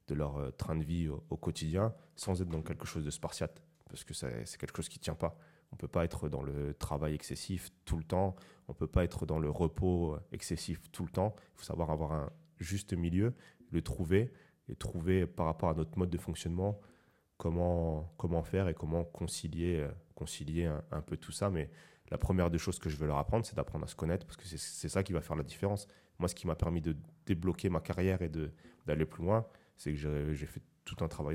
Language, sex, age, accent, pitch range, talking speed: French, male, 30-49, French, 80-95 Hz, 235 wpm